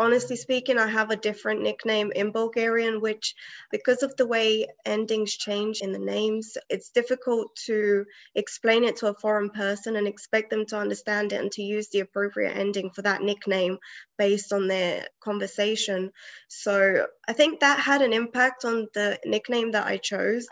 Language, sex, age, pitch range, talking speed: English, female, 20-39, 205-250 Hz, 175 wpm